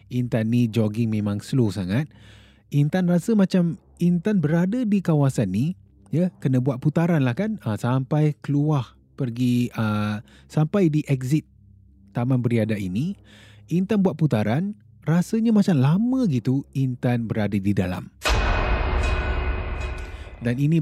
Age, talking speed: 30-49, 125 wpm